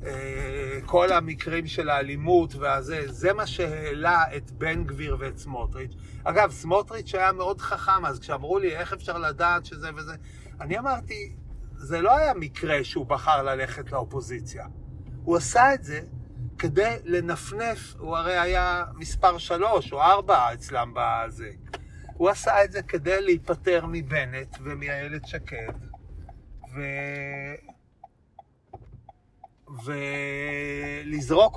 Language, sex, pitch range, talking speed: Hebrew, male, 135-180 Hz, 120 wpm